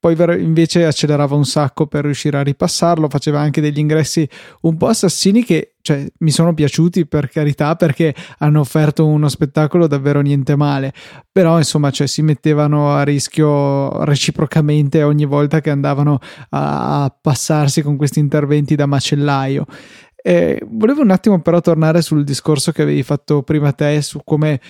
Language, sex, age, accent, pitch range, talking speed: Italian, male, 20-39, native, 145-160 Hz, 150 wpm